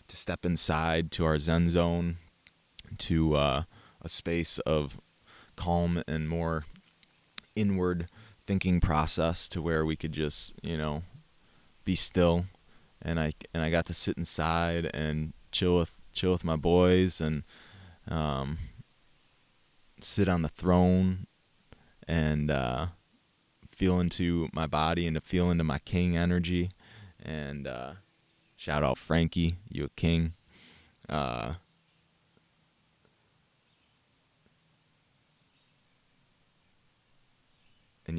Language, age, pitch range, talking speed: English, 20-39, 80-90 Hz, 110 wpm